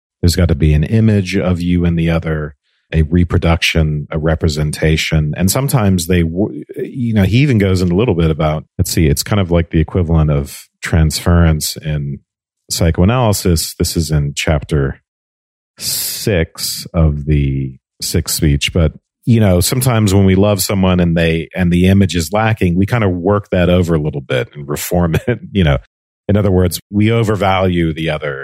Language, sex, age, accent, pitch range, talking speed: English, male, 40-59, American, 75-95 Hz, 180 wpm